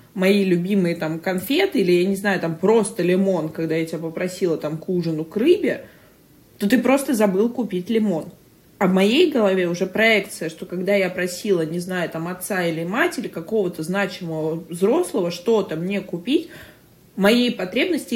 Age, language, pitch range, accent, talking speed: 20-39, Russian, 180-215 Hz, native, 165 wpm